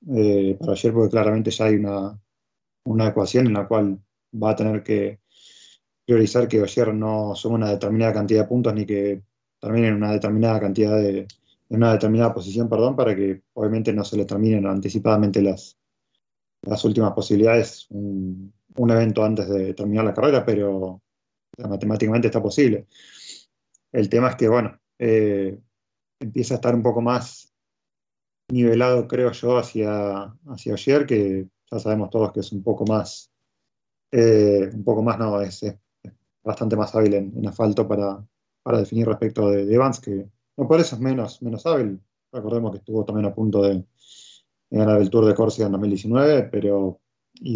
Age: 20-39